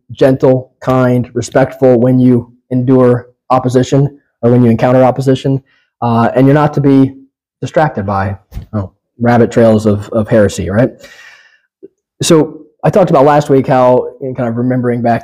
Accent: American